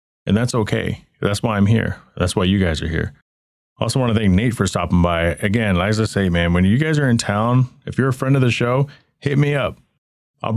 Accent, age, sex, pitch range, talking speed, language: American, 30-49, male, 90-115 Hz, 250 wpm, English